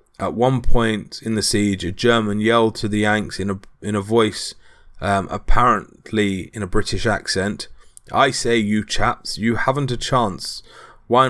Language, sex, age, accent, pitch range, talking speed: English, male, 30-49, British, 95-115 Hz, 170 wpm